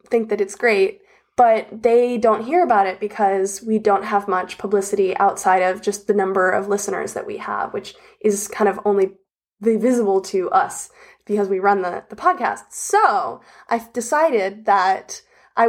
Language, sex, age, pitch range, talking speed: English, female, 10-29, 200-240 Hz, 170 wpm